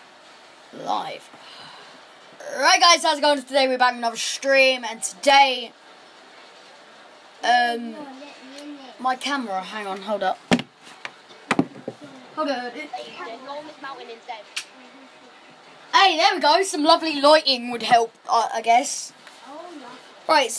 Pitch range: 230-315 Hz